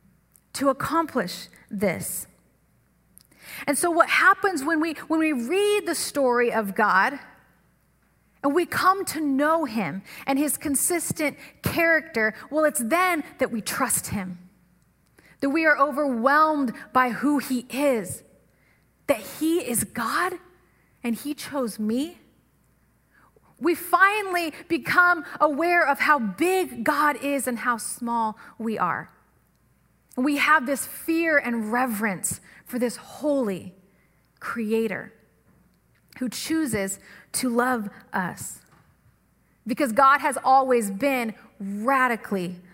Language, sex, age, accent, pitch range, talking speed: English, female, 30-49, American, 215-300 Hz, 120 wpm